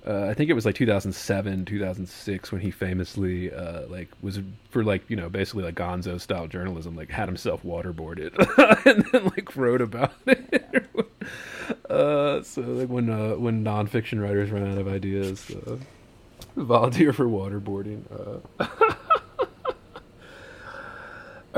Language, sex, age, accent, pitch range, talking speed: English, male, 30-49, American, 95-120 Hz, 140 wpm